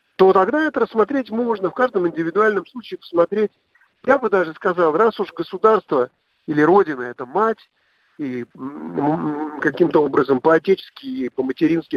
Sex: male